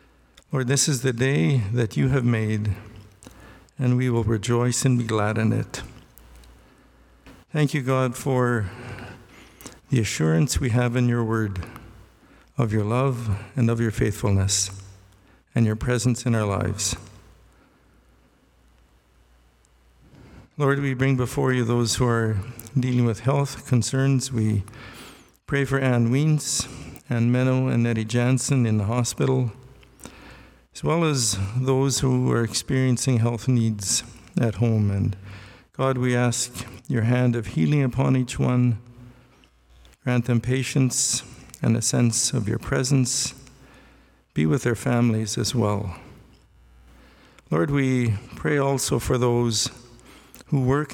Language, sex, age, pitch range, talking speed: English, male, 50-69, 105-130 Hz, 130 wpm